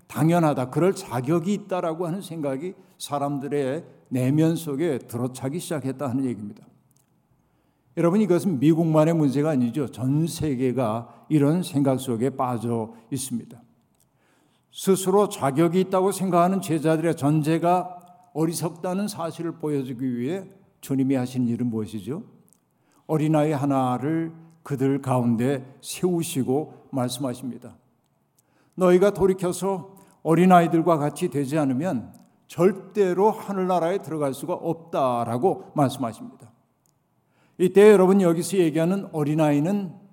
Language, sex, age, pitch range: Korean, male, 60-79, 135-180 Hz